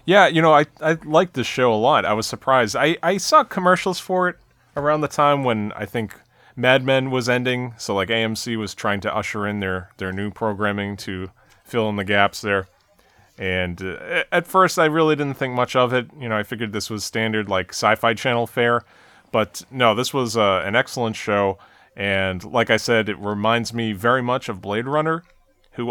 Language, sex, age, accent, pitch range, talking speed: English, male, 30-49, American, 100-135 Hz, 210 wpm